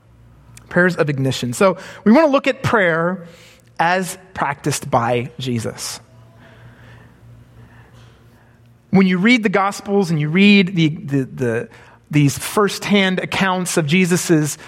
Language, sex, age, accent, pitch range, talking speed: English, male, 30-49, American, 125-190 Hz, 110 wpm